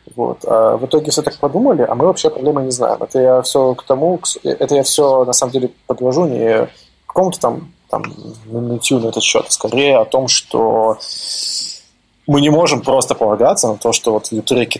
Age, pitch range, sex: 20-39, 110-145 Hz, male